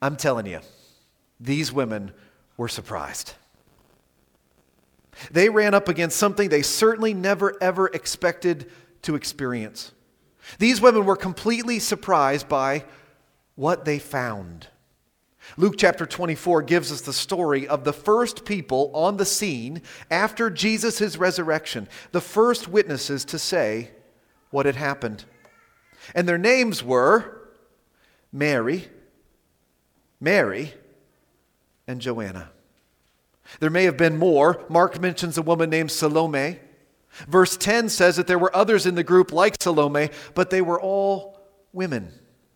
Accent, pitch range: American, 135-195 Hz